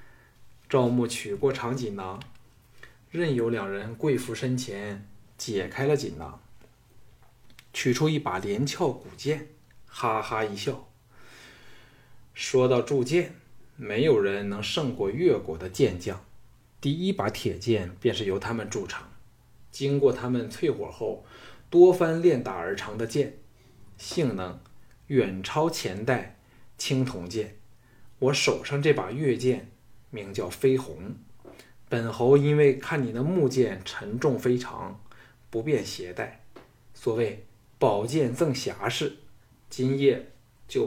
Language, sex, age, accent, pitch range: Chinese, male, 20-39, native, 105-135 Hz